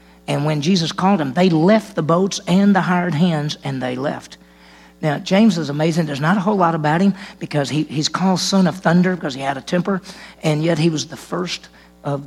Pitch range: 140-170 Hz